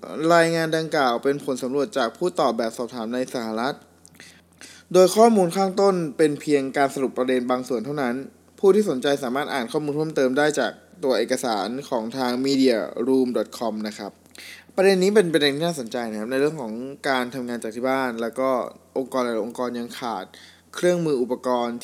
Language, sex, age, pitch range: Thai, male, 20-39, 120-155 Hz